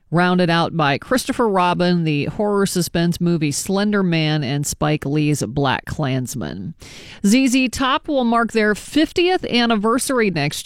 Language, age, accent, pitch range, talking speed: English, 40-59, American, 155-205 Hz, 135 wpm